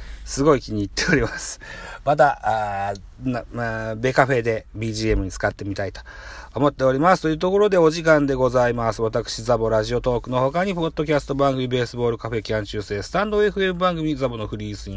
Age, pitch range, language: 40-59, 110-160 Hz, Japanese